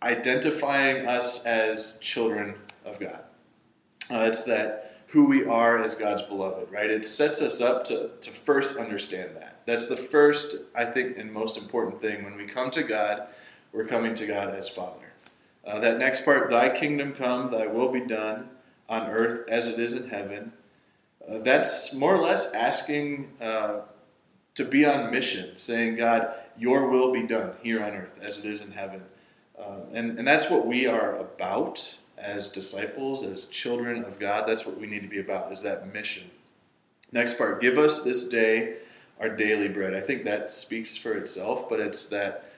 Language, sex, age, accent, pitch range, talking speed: English, male, 20-39, American, 105-130 Hz, 185 wpm